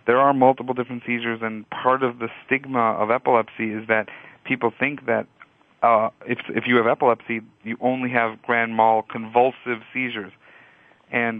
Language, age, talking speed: English, 40-59, 165 wpm